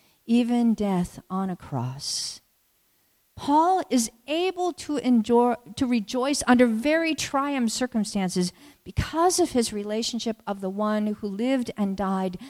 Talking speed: 130 wpm